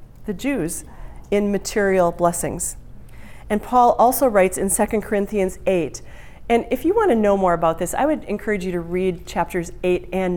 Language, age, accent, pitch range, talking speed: English, 40-59, American, 185-260 Hz, 180 wpm